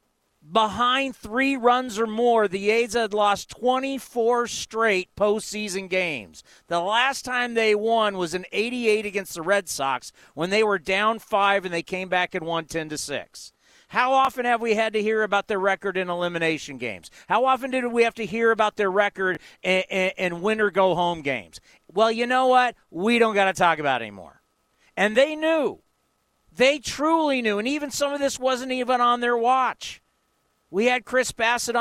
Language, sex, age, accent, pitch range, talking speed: English, male, 40-59, American, 180-245 Hz, 185 wpm